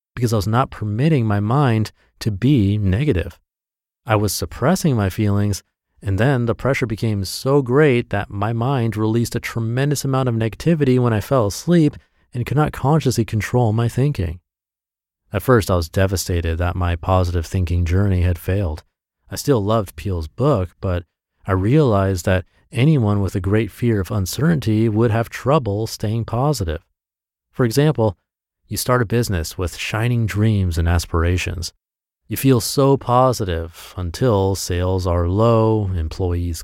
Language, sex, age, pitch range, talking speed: English, male, 30-49, 90-120 Hz, 155 wpm